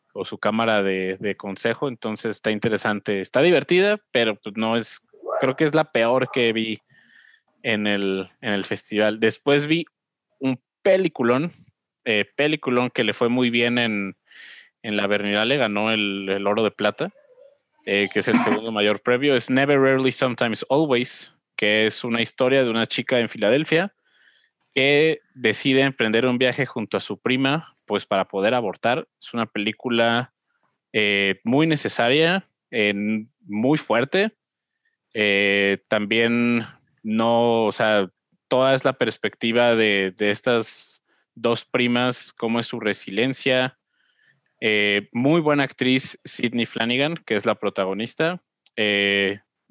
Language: Spanish